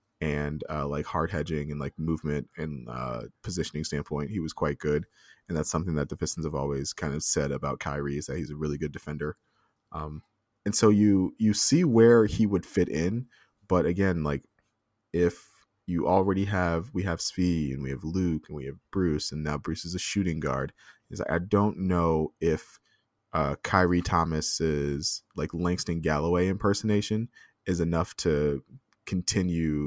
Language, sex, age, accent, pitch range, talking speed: English, male, 20-39, American, 75-95 Hz, 180 wpm